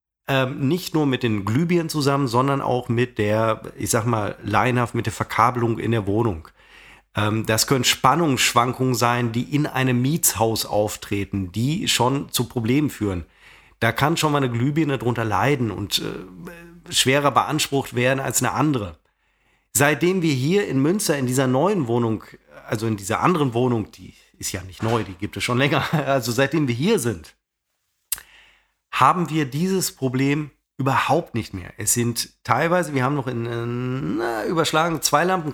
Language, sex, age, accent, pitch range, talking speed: German, male, 40-59, German, 115-150 Hz, 165 wpm